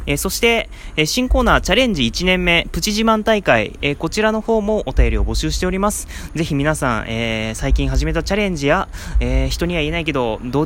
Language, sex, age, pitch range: Japanese, male, 20-39, 135-200 Hz